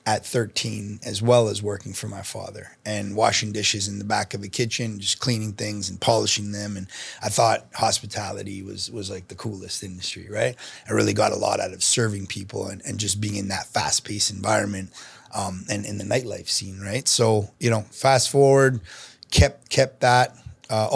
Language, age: French, 30-49